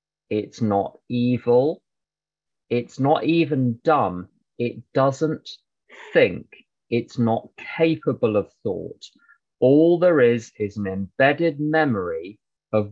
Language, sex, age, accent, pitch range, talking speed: English, male, 30-49, British, 110-150 Hz, 105 wpm